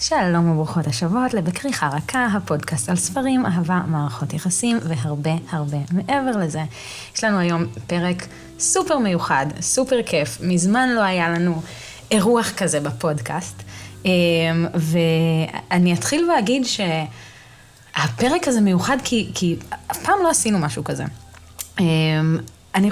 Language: Hebrew